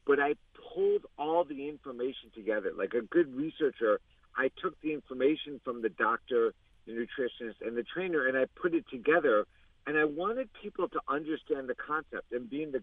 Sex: male